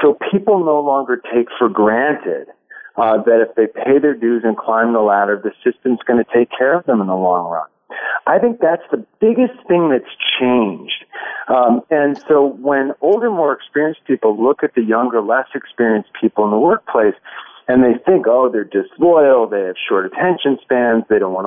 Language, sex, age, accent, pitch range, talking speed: English, male, 50-69, American, 120-170 Hz, 195 wpm